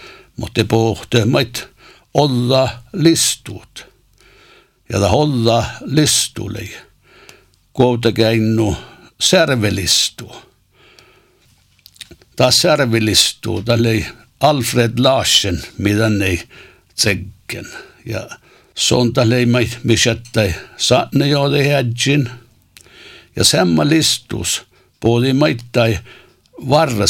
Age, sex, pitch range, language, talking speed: 60-79, male, 105-130 Hz, English, 75 wpm